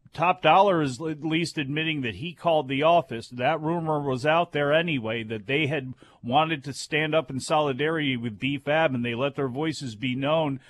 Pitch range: 140-170 Hz